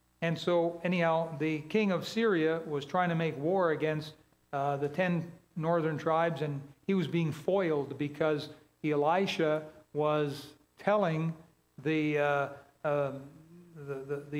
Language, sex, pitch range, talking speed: English, male, 150-175 Hz, 135 wpm